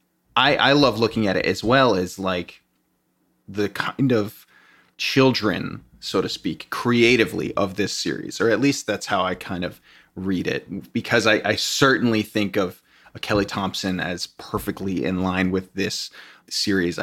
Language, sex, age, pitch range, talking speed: English, male, 20-39, 95-120 Hz, 160 wpm